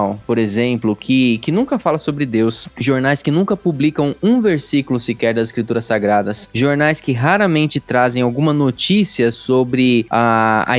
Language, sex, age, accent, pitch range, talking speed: Portuguese, male, 20-39, Brazilian, 120-155 Hz, 150 wpm